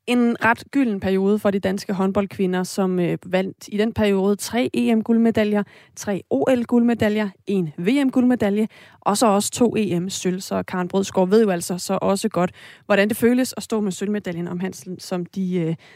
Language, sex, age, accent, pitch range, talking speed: Danish, female, 30-49, native, 190-235 Hz, 170 wpm